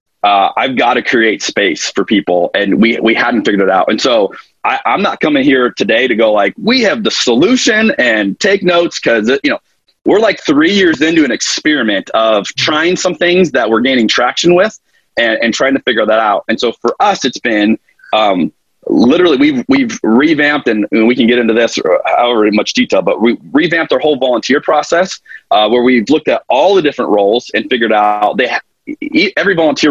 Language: English